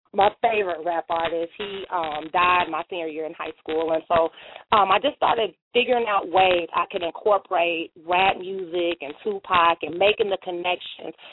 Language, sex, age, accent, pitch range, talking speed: English, female, 30-49, American, 170-205 Hz, 175 wpm